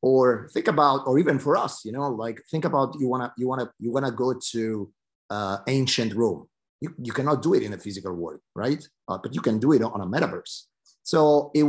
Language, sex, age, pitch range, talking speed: English, male, 30-49, 95-125 Hz, 230 wpm